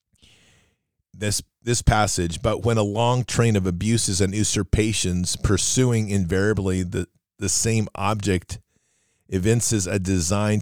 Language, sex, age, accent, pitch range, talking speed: English, male, 40-59, American, 95-115 Hz, 120 wpm